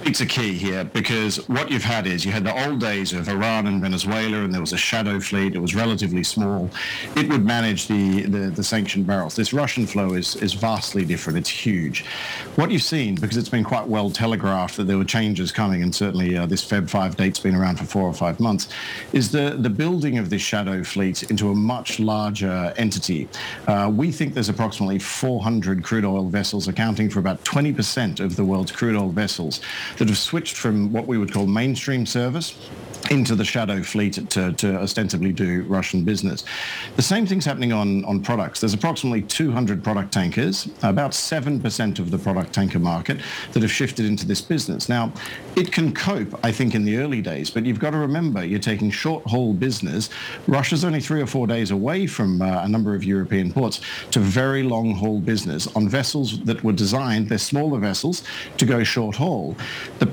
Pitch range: 100-125 Hz